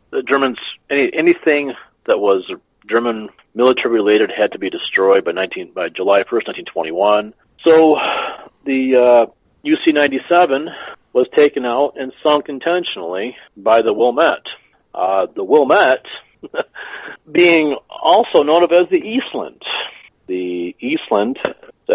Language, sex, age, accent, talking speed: English, male, 40-59, American, 120 wpm